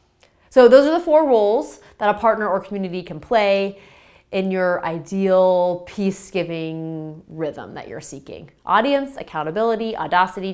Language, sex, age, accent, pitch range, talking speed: English, female, 30-49, American, 175-235 Hz, 135 wpm